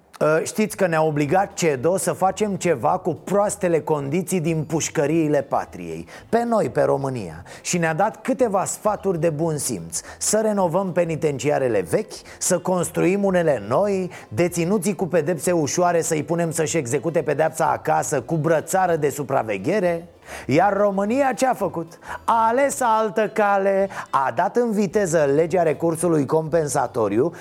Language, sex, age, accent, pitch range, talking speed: Romanian, male, 30-49, native, 160-205 Hz, 140 wpm